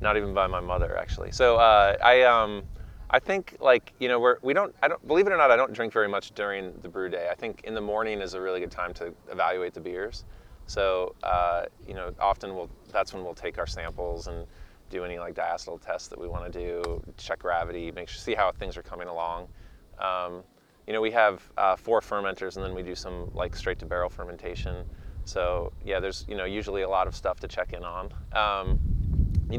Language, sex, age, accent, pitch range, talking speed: English, male, 20-39, American, 85-100 Hz, 230 wpm